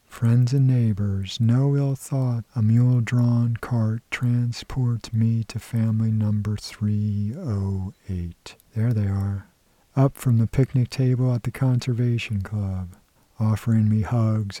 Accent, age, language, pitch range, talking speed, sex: American, 50-69, English, 100-120 Hz, 125 wpm, male